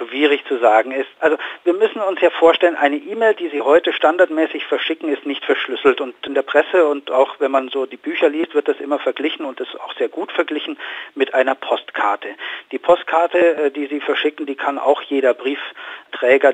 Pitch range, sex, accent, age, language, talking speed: 135-205 Hz, male, German, 50-69, German, 200 wpm